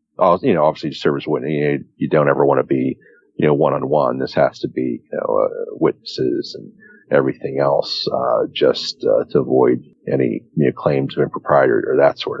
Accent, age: American, 40-59